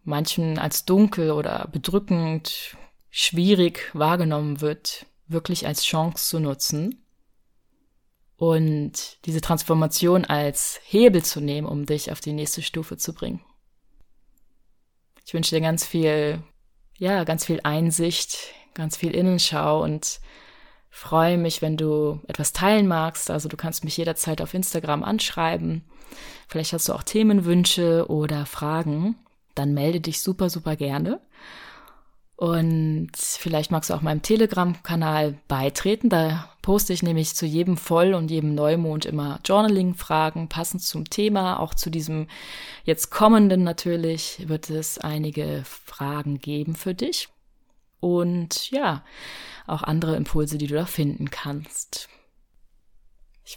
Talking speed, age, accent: 130 wpm, 20-39, German